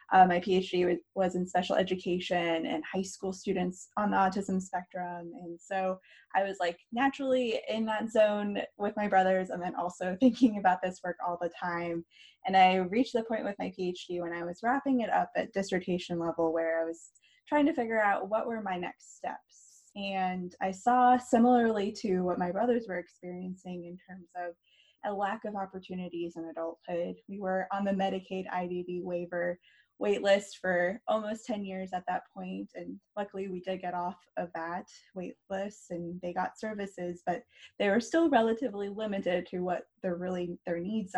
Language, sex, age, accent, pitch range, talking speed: English, female, 10-29, American, 175-205 Hz, 180 wpm